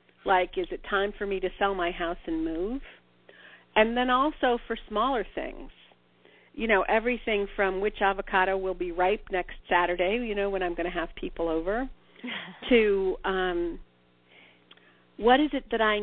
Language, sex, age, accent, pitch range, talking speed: English, female, 50-69, American, 165-215 Hz, 170 wpm